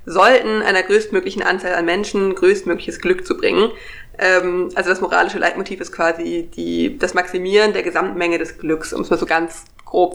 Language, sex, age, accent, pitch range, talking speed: German, female, 20-39, German, 175-210 Hz, 165 wpm